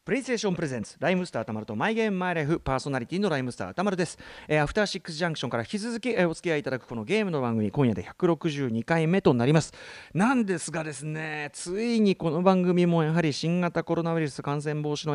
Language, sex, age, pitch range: Japanese, male, 40-59, 140-205 Hz